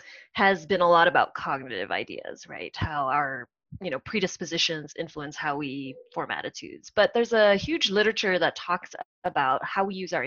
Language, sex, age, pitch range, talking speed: English, female, 20-39, 165-220 Hz, 175 wpm